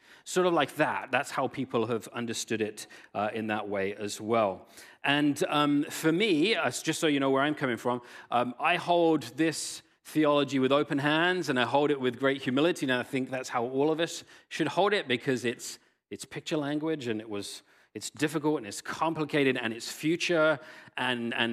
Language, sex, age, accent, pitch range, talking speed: English, male, 40-59, British, 120-160 Hz, 205 wpm